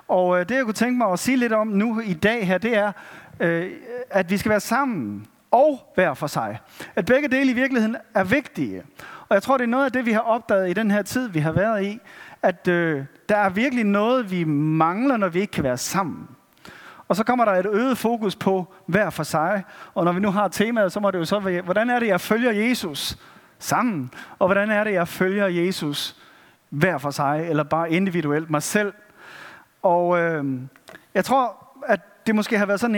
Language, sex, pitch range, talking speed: Danish, male, 175-230 Hz, 215 wpm